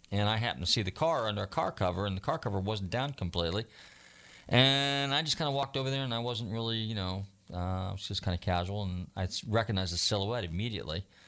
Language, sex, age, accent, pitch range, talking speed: English, male, 40-59, American, 95-115 Hz, 240 wpm